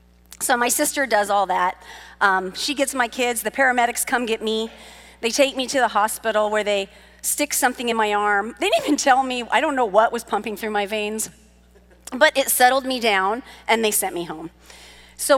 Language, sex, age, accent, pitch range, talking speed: English, female, 40-59, American, 205-275 Hz, 210 wpm